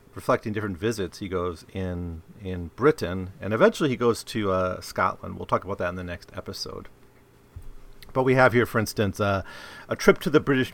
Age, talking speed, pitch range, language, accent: 40-59, 195 wpm, 95-125 Hz, English, American